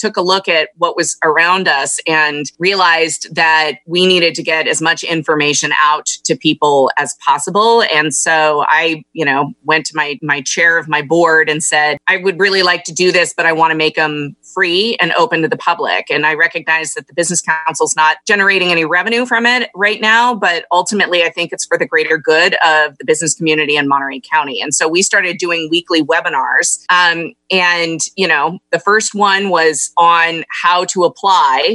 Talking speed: 200 wpm